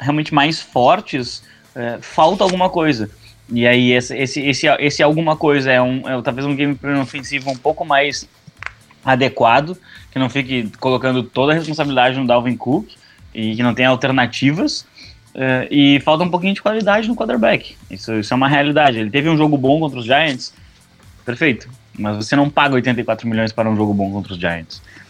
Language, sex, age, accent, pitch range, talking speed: English, male, 20-39, Brazilian, 115-145 Hz, 185 wpm